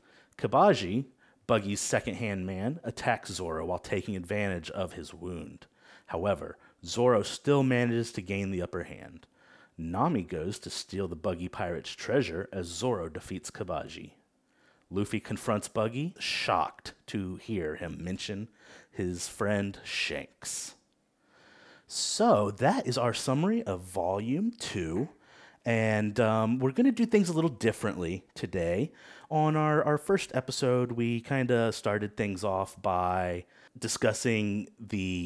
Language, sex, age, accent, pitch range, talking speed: English, male, 30-49, American, 95-125 Hz, 130 wpm